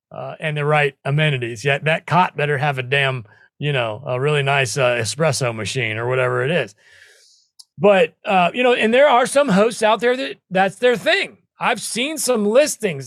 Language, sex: English, male